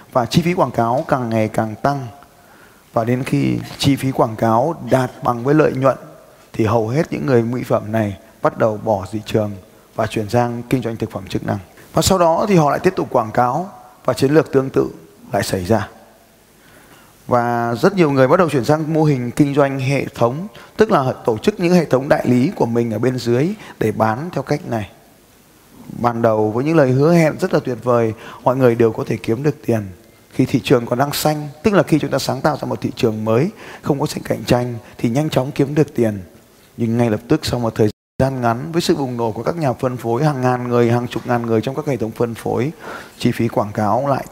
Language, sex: Vietnamese, male